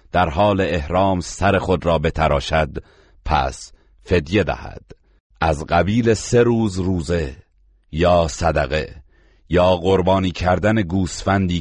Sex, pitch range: male, 80-95 Hz